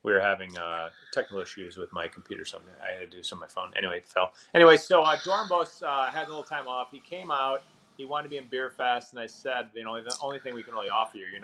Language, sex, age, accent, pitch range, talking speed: English, male, 30-49, American, 105-140 Hz, 285 wpm